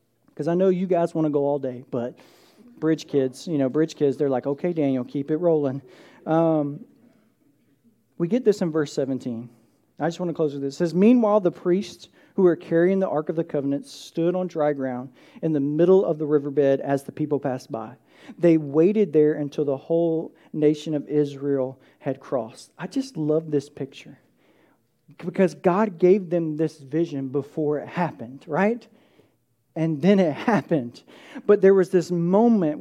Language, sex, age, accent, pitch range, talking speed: English, male, 40-59, American, 150-210 Hz, 185 wpm